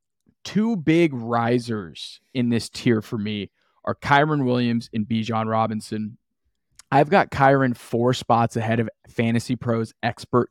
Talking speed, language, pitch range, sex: 145 wpm, English, 110-135 Hz, male